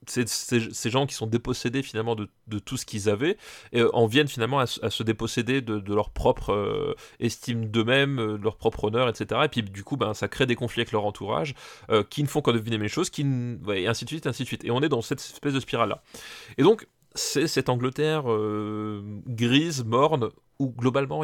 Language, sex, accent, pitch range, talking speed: French, male, French, 105-135 Hz, 230 wpm